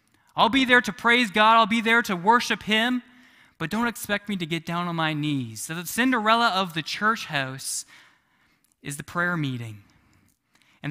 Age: 20-39